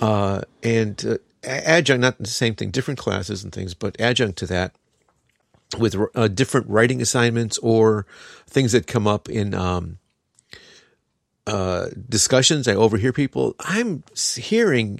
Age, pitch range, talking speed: 50-69, 100-130 Hz, 140 wpm